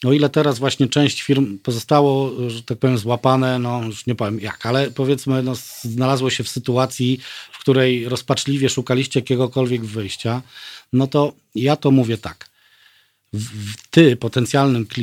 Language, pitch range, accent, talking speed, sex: Polish, 120-145 Hz, native, 150 wpm, male